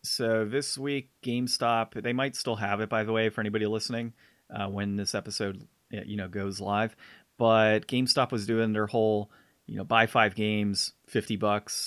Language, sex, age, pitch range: English, male, 30-49, 100-115 Hz